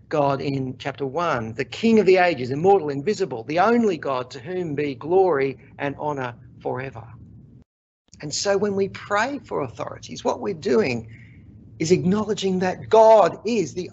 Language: English